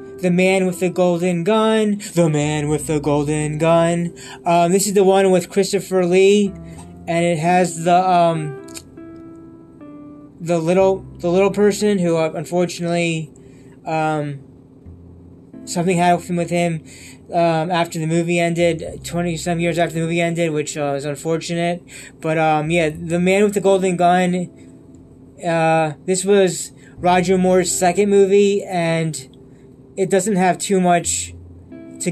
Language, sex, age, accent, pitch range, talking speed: English, male, 20-39, American, 150-185 Hz, 145 wpm